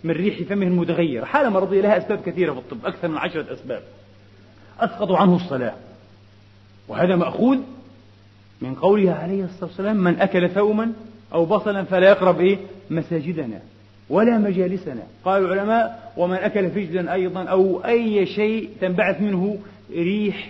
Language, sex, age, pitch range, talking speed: Arabic, male, 40-59, 170-225 Hz, 145 wpm